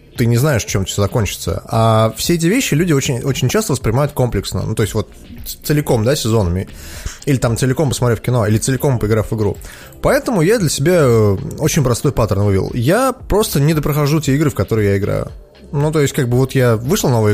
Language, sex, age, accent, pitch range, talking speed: Russian, male, 20-39, native, 105-145 Hz, 210 wpm